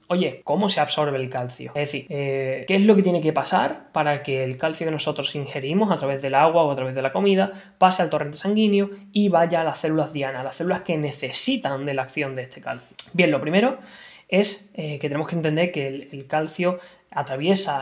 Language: Spanish